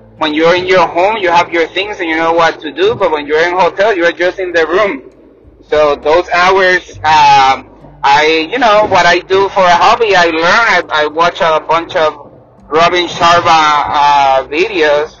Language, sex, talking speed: English, male, 200 wpm